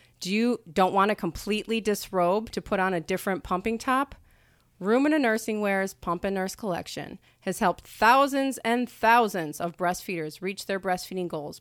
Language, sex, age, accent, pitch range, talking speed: English, female, 30-49, American, 185-235 Hz, 165 wpm